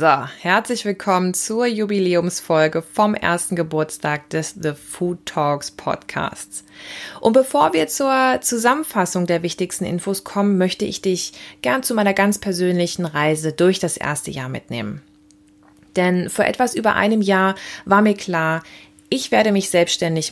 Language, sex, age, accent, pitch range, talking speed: German, female, 20-39, German, 160-200 Hz, 140 wpm